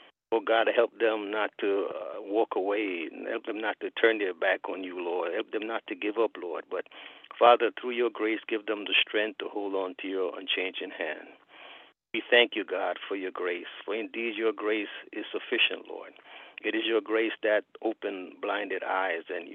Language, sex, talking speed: English, male, 200 wpm